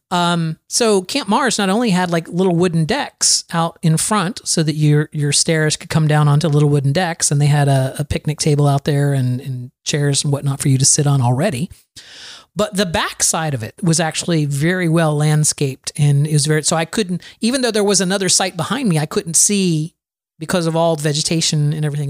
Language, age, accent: English, 40-59, American